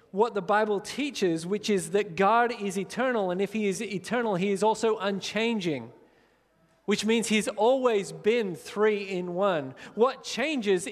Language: English